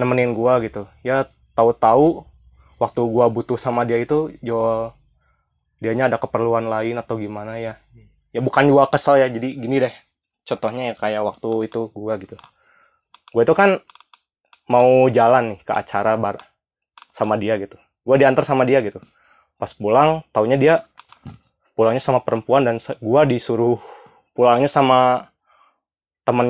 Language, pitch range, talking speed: Indonesian, 115-140 Hz, 145 wpm